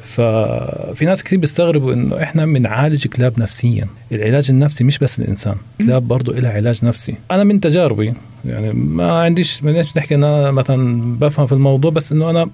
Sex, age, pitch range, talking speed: male, 40-59, 120-155 Hz, 175 wpm